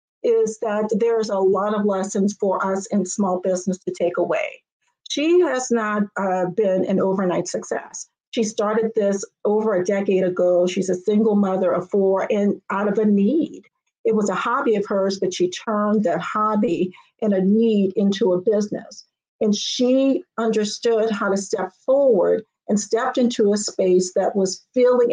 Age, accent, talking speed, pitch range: 50-69, American, 175 wpm, 195-235 Hz